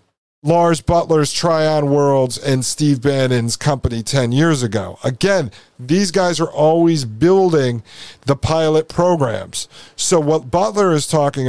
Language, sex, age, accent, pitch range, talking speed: English, male, 50-69, American, 130-160 Hz, 130 wpm